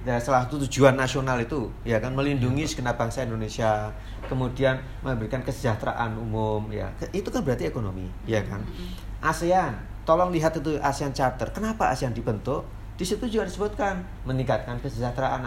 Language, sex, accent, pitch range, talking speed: Indonesian, male, native, 105-140 Hz, 145 wpm